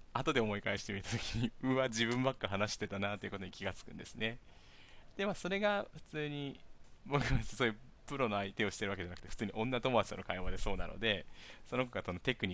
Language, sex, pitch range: Japanese, male, 95-135 Hz